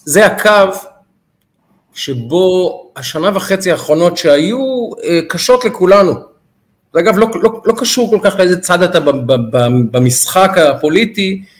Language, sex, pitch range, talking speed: Hebrew, male, 180-240 Hz, 110 wpm